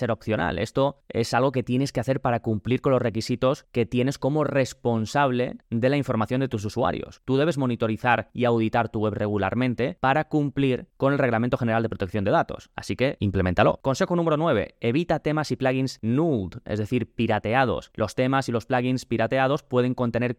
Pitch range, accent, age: 110-135 Hz, Spanish, 20-39